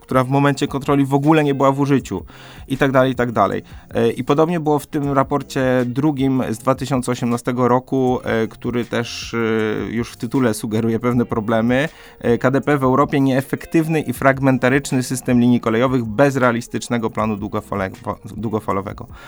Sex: male